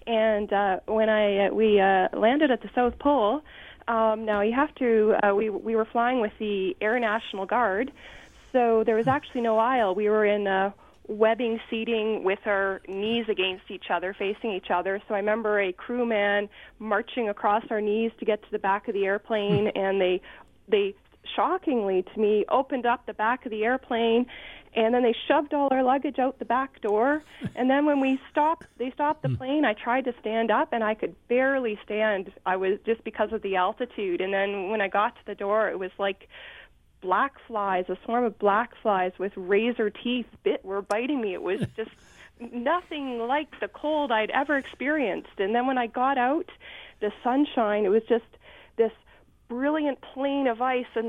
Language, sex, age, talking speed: English, female, 30-49, 195 wpm